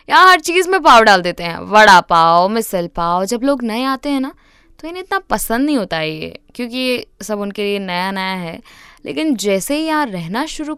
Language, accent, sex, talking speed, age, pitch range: Hindi, native, female, 215 wpm, 20-39, 220-325 Hz